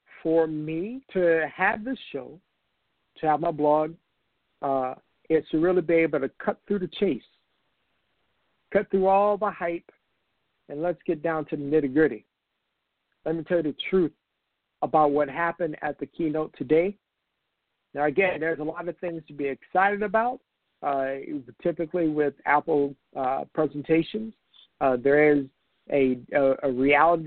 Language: English